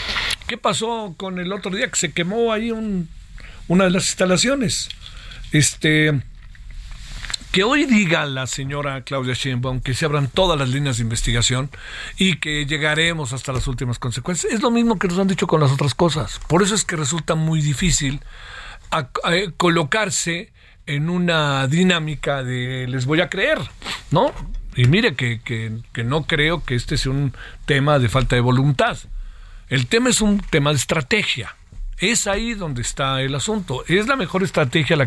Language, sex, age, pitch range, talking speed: Spanish, male, 50-69, 140-190 Hz, 175 wpm